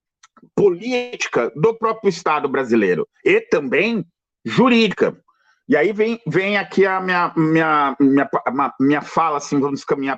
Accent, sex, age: Brazilian, male, 50-69